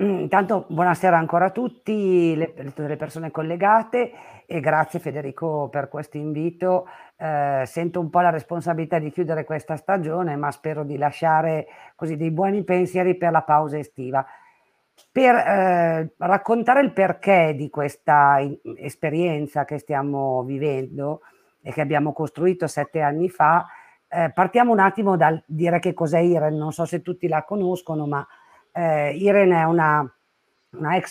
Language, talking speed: Italian, 150 wpm